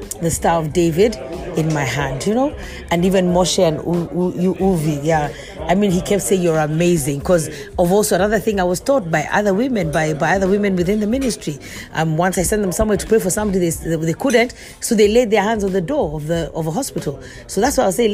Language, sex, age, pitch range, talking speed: English, female, 40-59, 165-205 Hz, 240 wpm